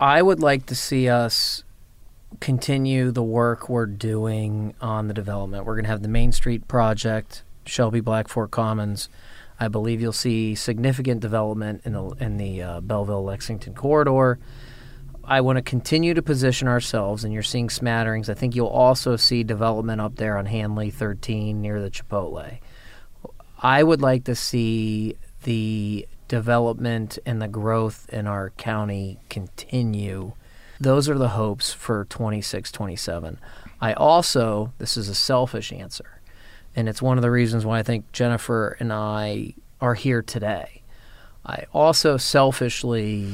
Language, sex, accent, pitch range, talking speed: English, male, American, 105-125 Hz, 150 wpm